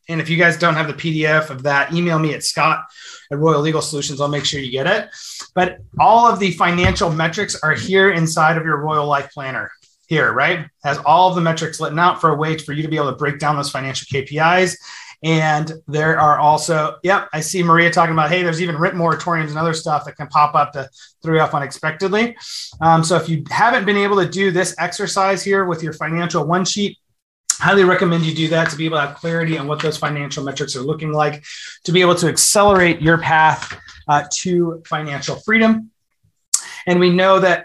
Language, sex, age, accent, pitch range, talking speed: English, male, 30-49, American, 150-185 Hz, 220 wpm